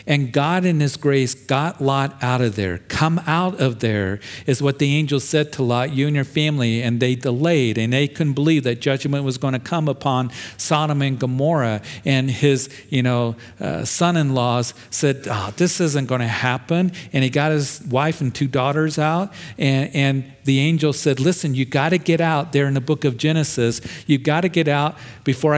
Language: English